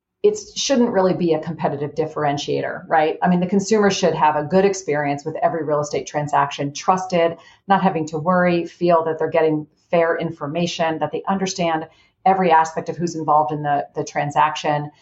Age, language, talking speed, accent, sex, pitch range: 40-59, English, 180 wpm, American, female, 150-180 Hz